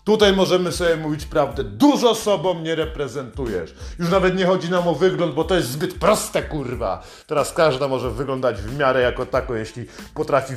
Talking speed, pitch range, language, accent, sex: 180 wpm, 150-200 Hz, Polish, native, male